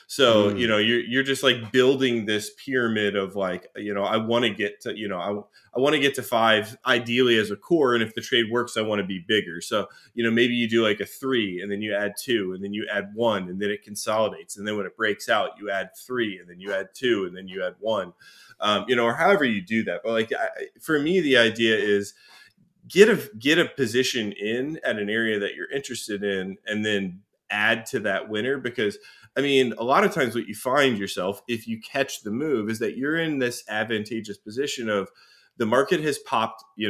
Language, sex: English, male